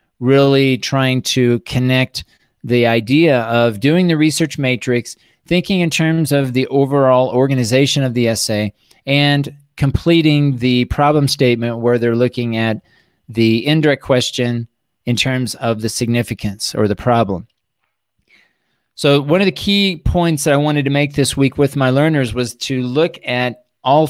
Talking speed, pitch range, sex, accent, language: 155 wpm, 120-140 Hz, male, American, English